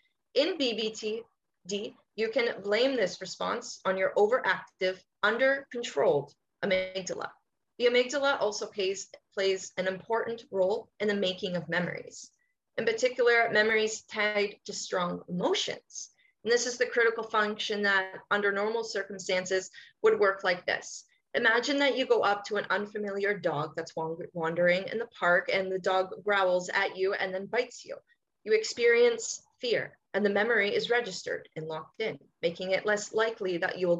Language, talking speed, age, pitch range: English, 155 wpm, 30-49, 185-235 Hz